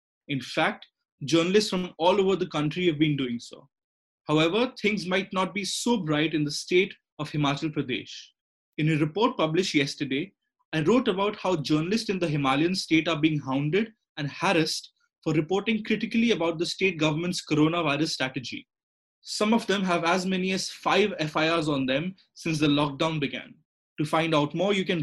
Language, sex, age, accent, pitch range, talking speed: English, male, 20-39, Indian, 150-190 Hz, 175 wpm